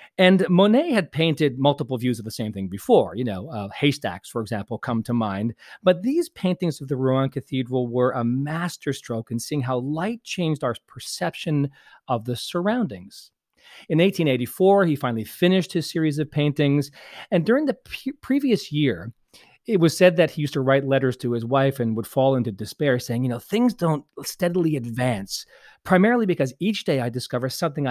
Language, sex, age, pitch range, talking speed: English, male, 40-59, 125-170 Hz, 185 wpm